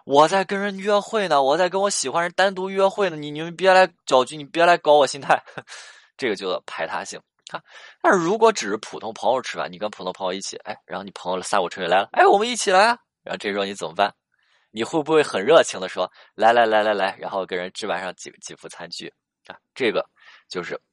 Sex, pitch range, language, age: male, 105-175 Hz, Chinese, 20-39